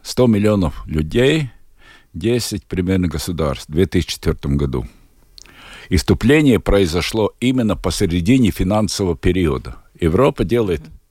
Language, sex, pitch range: Russian, male, 75-105 Hz